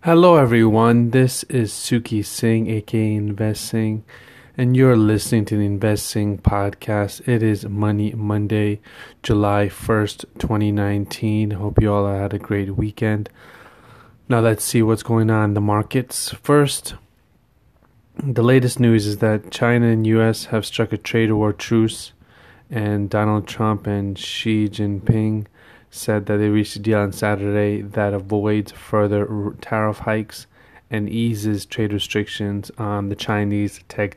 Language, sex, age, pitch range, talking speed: English, male, 20-39, 100-110 Hz, 145 wpm